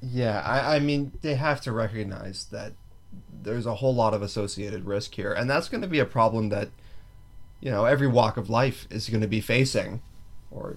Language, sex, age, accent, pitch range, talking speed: English, male, 30-49, American, 100-125 Hz, 205 wpm